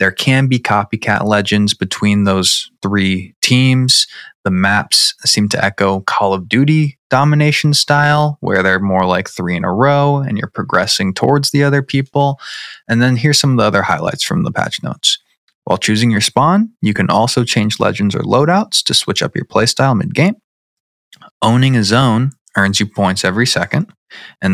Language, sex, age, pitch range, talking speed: English, male, 20-39, 100-135 Hz, 175 wpm